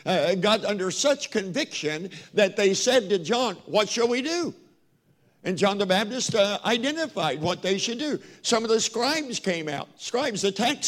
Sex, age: male, 60-79